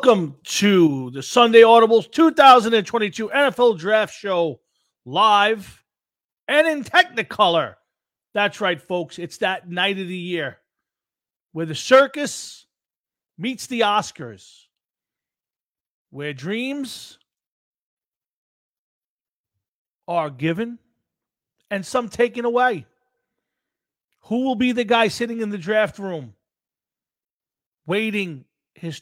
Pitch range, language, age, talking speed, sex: 165-250 Hz, English, 40-59, 100 wpm, male